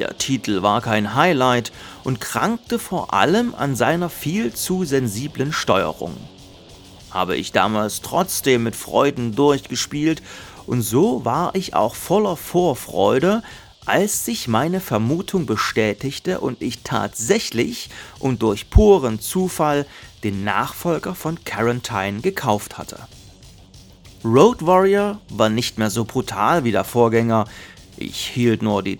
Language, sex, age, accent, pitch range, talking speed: German, male, 40-59, German, 105-150 Hz, 125 wpm